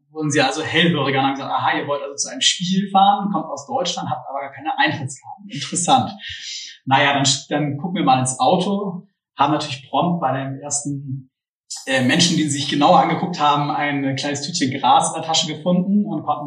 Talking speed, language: 195 wpm, German